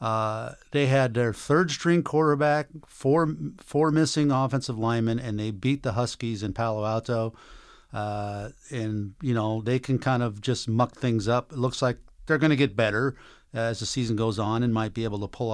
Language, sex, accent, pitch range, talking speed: English, male, American, 115-140 Hz, 195 wpm